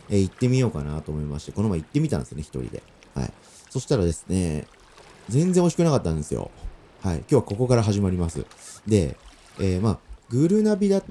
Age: 30-49